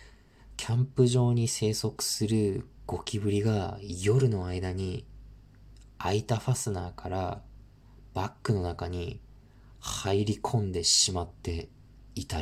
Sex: male